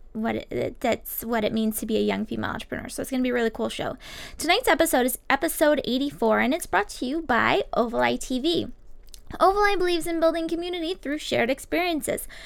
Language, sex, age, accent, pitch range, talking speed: English, female, 10-29, American, 230-310 Hz, 200 wpm